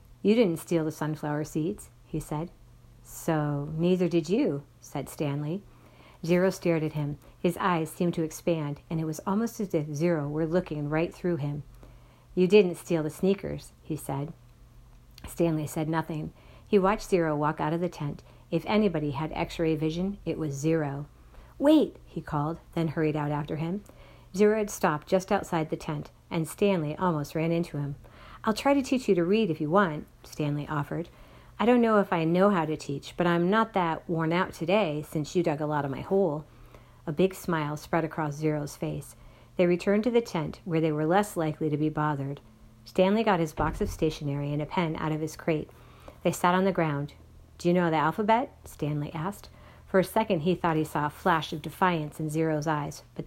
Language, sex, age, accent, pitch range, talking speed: English, female, 50-69, American, 150-180 Hz, 200 wpm